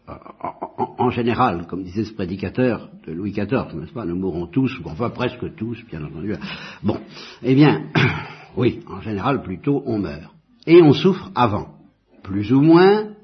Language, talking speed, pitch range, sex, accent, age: French, 170 wpm, 110-145 Hz, male, French, 60-79